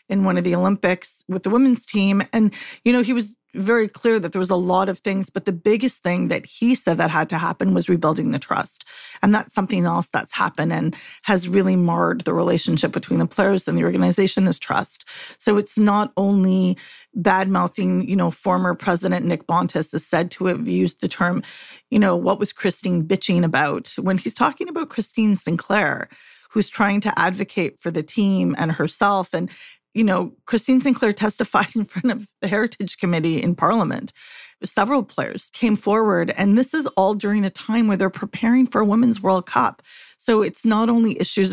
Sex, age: female, 30-49